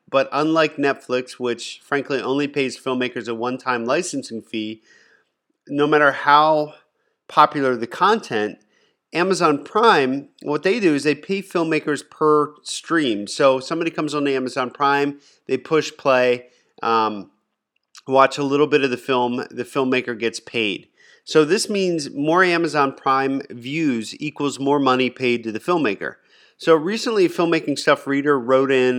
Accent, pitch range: American, 125-150 Hz